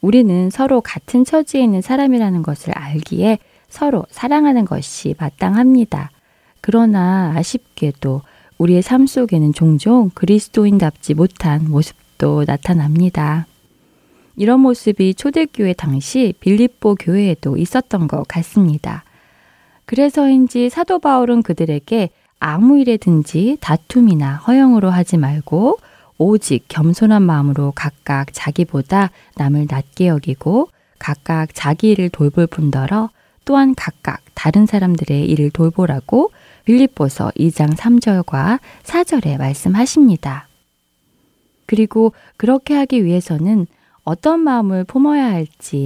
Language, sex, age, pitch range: Korean, female, 20-39, 155-235 Hz